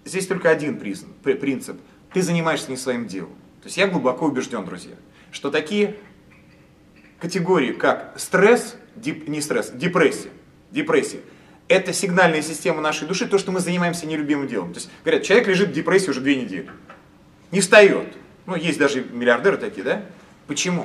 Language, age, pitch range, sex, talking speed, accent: Russian, 30-49, 155-215 Hz, male, 155 wpm, native